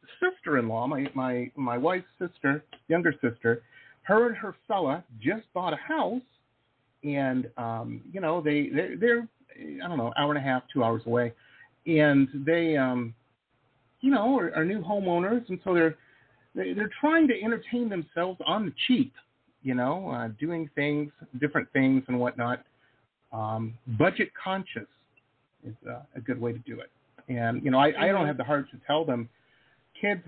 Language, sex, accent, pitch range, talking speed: English, male, American, 125-215 Hz, 170 wpm